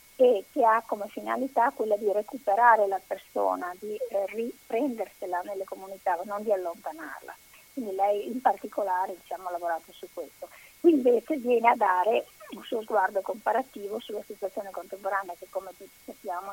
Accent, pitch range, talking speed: native, 190-260 Hz, 155 wpm